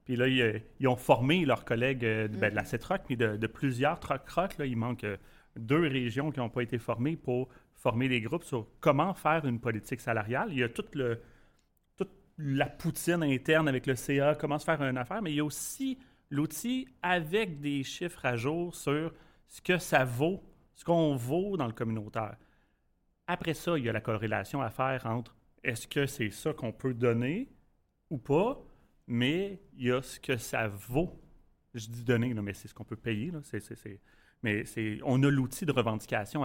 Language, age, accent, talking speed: French, 30-49, Canadian, 200 wpm